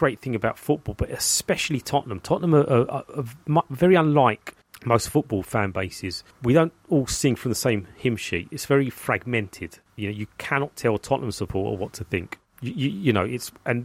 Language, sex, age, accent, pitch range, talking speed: English, male, 30-49, British, 105-135 Hz, 200 wpm